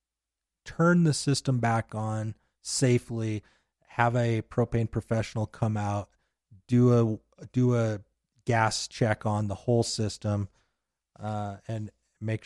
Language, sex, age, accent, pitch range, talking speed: English, male, 30-49, American, 105-135 Hz, 120 wpm